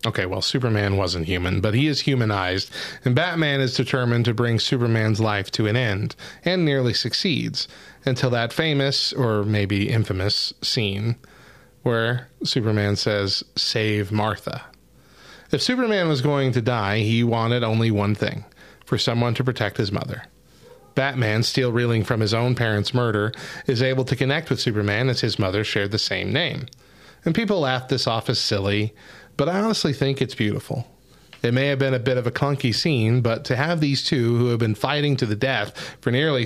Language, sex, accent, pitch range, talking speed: English, male, American, 110-135 Hz, 180 wpm